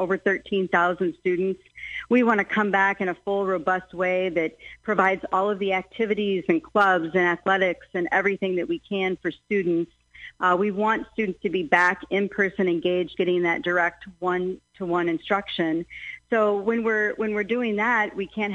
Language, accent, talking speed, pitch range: English, American, 175 wpm, 175-205 Hz